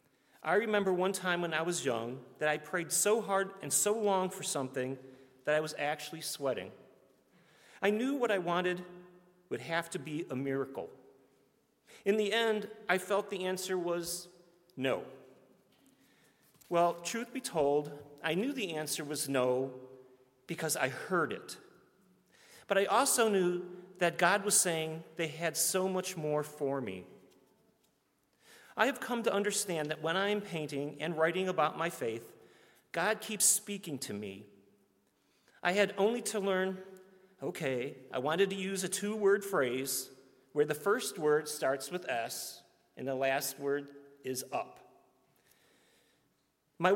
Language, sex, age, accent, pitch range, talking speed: English, male, 40-59, American, 150-195 Hz, 150 wpm